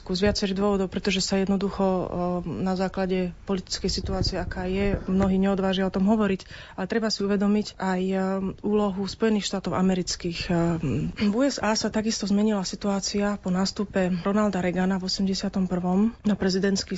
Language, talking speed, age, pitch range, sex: Slovak, 140 wpm, 30-49, 180-200 Hz, female